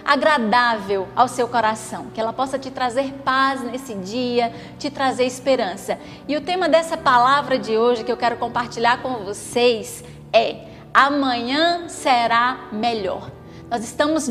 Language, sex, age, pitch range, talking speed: Portuguese, female, 20-39, 240-320 Hz, 145 wpm